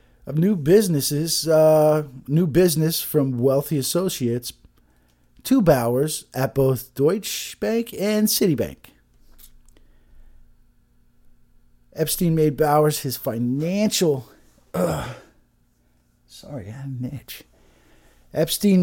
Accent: American